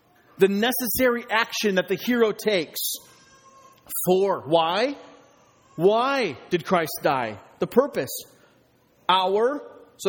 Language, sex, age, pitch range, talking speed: English, male, 30-49, 170-230 Hz, 100 wpm